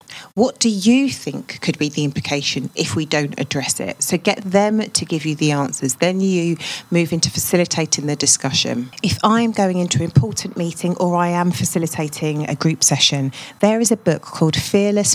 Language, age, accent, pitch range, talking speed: English, 40-59, British, 145-170 Hz, 190 wpm